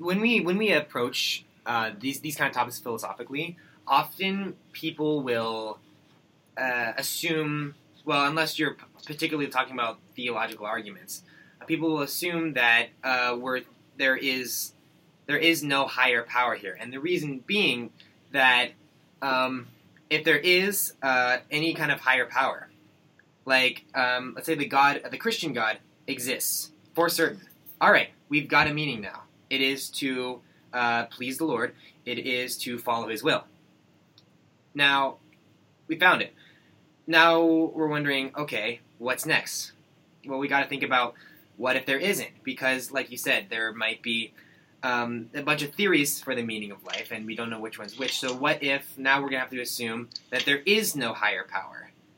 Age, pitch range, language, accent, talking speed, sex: 20-39, 125-155 Hz, English, American, 170 wpm, male